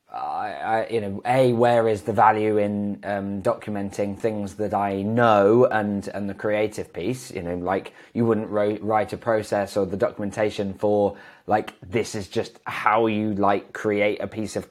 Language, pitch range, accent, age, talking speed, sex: English, 95-115 Hz, British, 20-39, 185 wpm, male